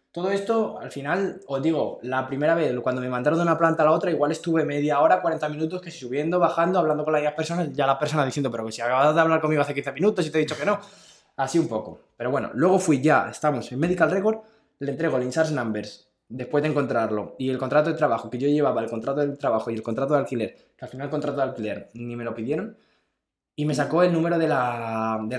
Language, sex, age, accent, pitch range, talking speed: Spanish, male, 20-39, Spanish, 120-165 Hz, 255 wpm